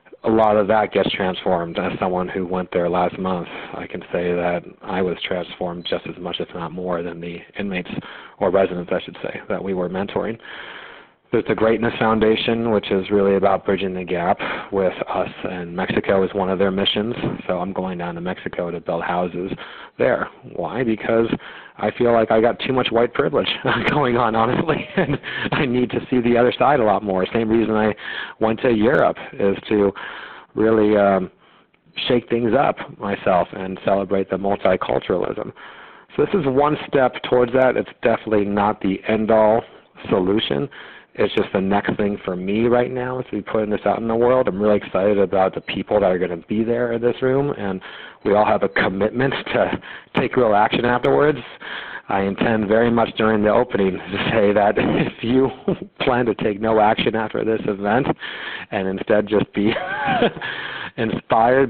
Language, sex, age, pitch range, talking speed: English, male, 40-59, 95-115 Hz, 185 wpm